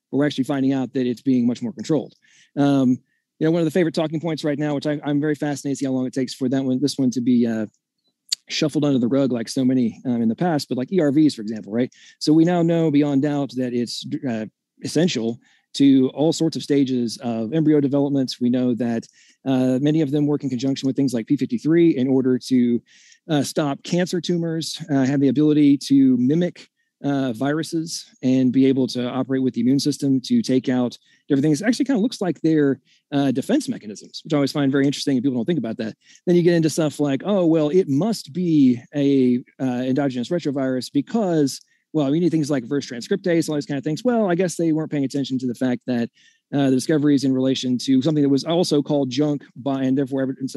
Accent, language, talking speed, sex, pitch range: American, English, 235 wpm, male, 130-160 Hz